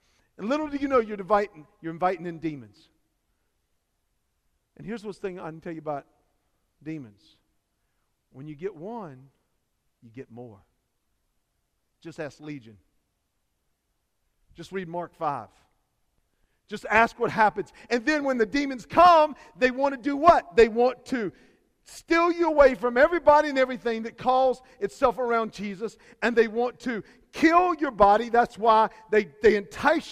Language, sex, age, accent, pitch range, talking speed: English, male, 50-69, American, 170-255 Hz, 155 wpm